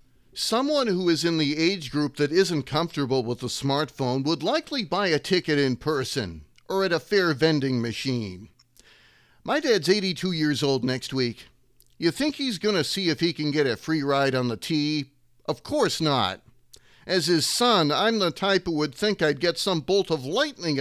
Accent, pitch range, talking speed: American, 130-195 Hz, 195 wpm